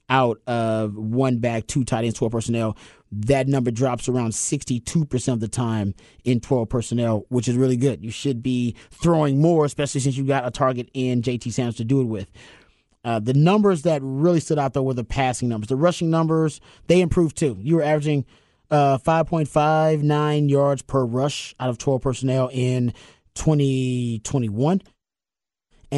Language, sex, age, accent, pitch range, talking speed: English, male, 30-49, American, 115-140 Hz, 170 wpm